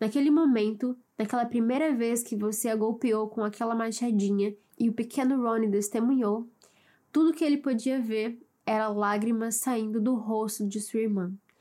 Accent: Brazilian